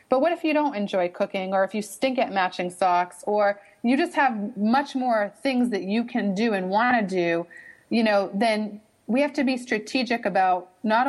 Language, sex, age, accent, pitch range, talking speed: English, female, 30-49, American, 190-240 Hz, 210 wpm